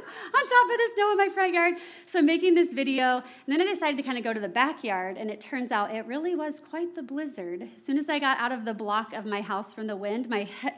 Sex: female